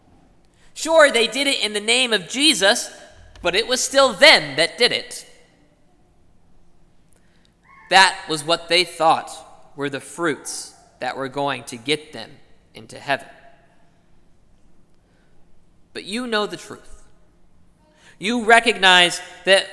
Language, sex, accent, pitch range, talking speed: English, male, American, 180-240 Hz, 125 wpm